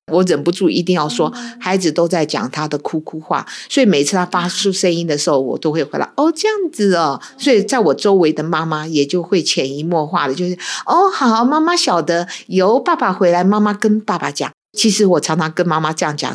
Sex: female